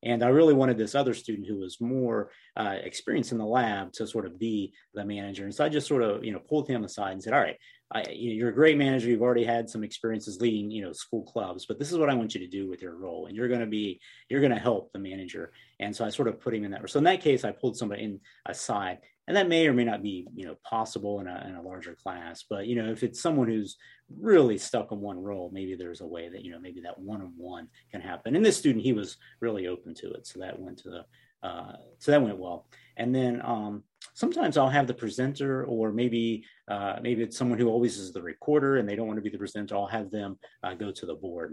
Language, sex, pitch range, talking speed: English, male, 100-125 Hz, 270 wpm